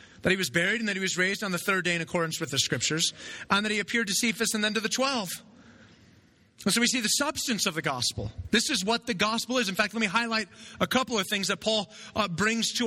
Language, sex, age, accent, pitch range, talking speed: English, male, 30-49, American, 165-225 Hz, 270 wpm